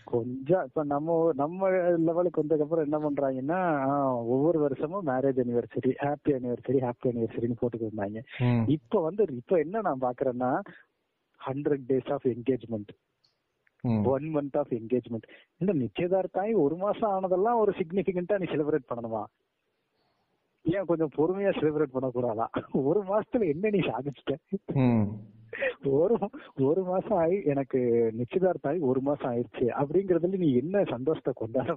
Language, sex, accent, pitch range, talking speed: Tamil, male, native, 125-170 Hz, 70 wpm